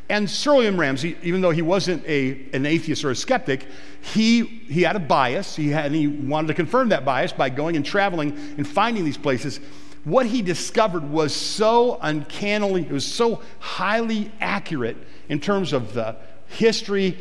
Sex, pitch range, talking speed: male, 135-185 Hz, 180 wpm